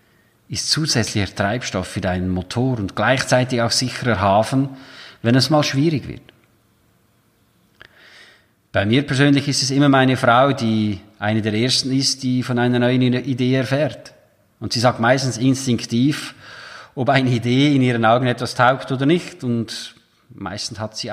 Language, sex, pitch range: German, male, 110-135 Hz